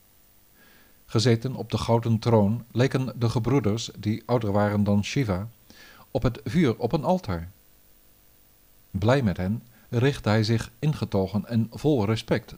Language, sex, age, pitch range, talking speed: Dutch, male, 50-69, 105-130 Hz, 140 wpm